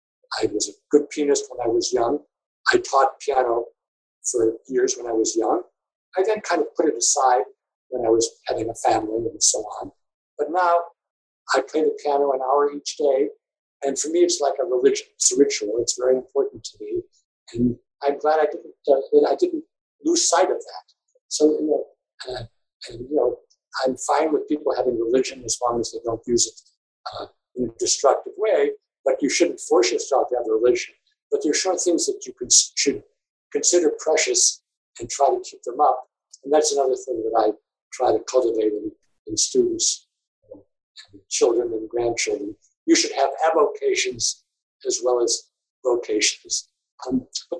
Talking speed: 185 wpm